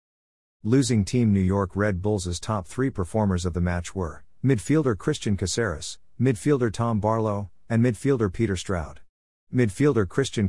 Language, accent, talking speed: English, American, 145 wpm